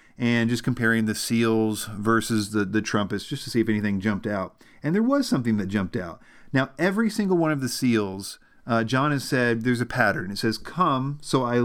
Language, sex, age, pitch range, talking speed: English, male, 40-59, 110-130 Hz, 215 wpm